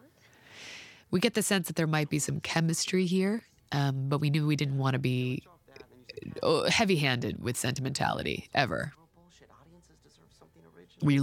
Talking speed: 135 wpm